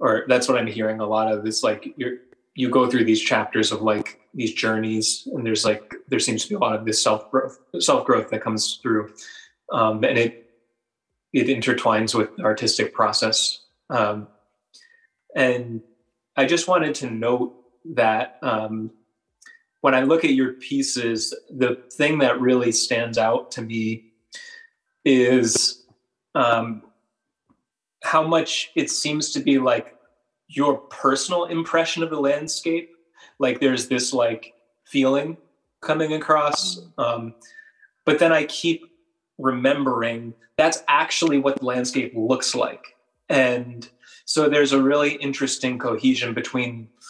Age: 20-39